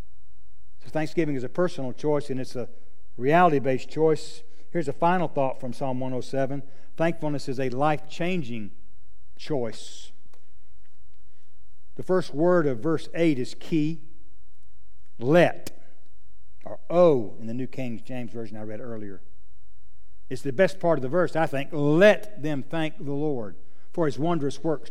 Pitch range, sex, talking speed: 125-205 Hz, male, 145 wpm